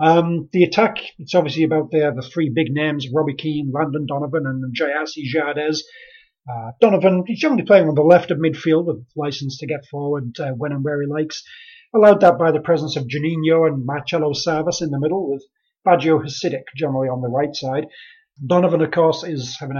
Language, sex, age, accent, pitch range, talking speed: English, male, 30-49, British, 140-170 Hz, 195 wpm